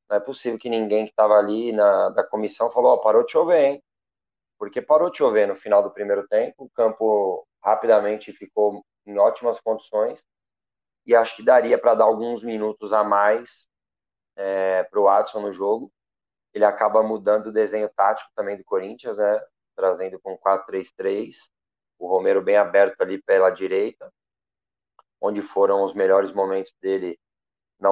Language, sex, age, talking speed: Portuguese, male, 20-39, 160 wpm